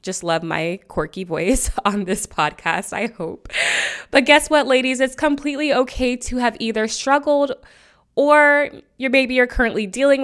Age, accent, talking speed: 20-39, American, 150 wpm